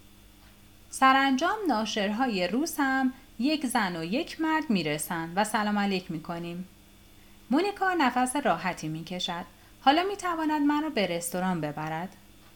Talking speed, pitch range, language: 120 wpm, 170-275 Hz, Persian